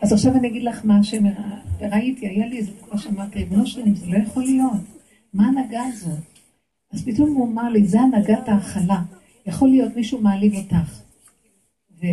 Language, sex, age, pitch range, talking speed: Hebrew, female, 50-69, 195-240 Hz, 165 wpm